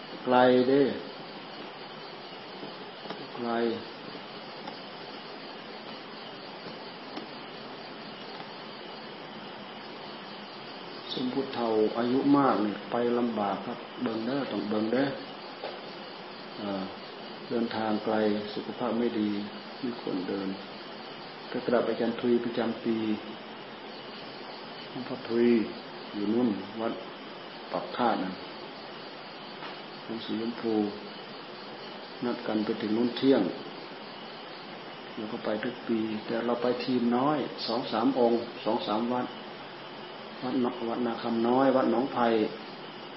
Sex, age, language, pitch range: male, 50-69, Thai, 110-125 Hz